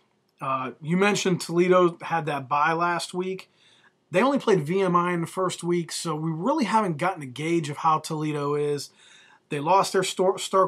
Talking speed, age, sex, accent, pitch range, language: 180 wpm, 30-49, male, American, 145-180 Hz, English